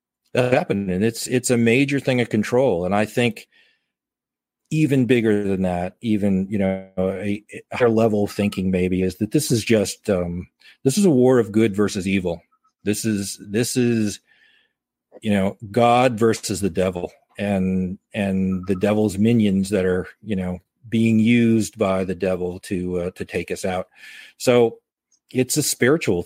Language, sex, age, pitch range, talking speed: English, male, 40-59, 95-115 Hz, 170 wpm